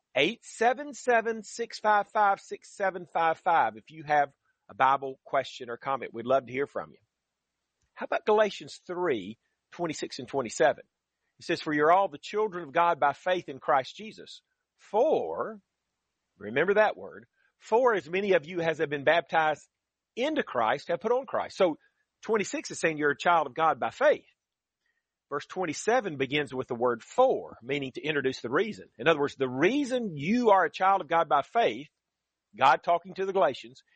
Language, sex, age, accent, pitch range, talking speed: English, male, 40-59, American, 140-215 Hz, 170 wpm